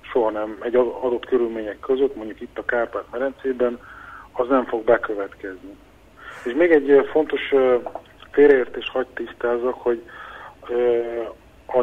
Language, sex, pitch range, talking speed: Hungarian, male, 110-125 Hz, 110 wpm